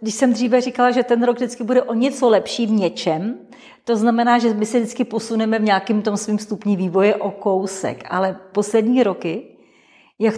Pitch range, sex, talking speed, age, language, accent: 180-215 Hz, female, 190 wpm, 40-59, Czech, native